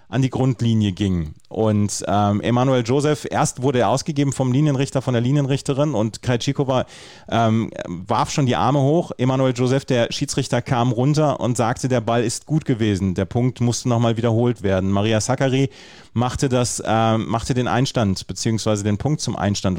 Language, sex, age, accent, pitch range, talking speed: German, male, 30-49, German, 105-130 Hz, 175 wpm